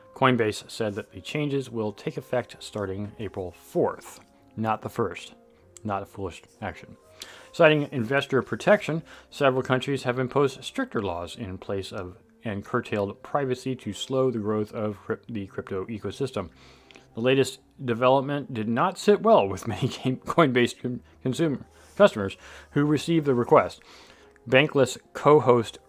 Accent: American